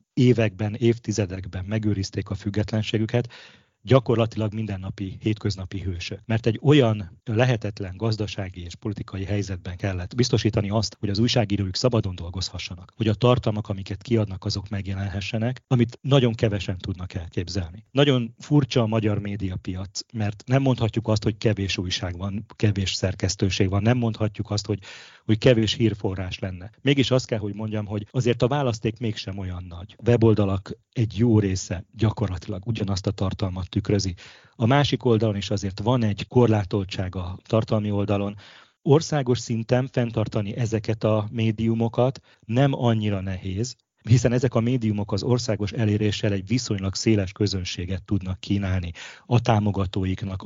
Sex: male